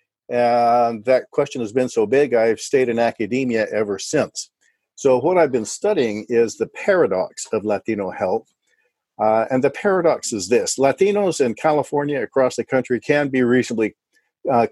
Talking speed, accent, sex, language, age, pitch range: 165 wpm, American, male, English, 50-69, 120-145 Hz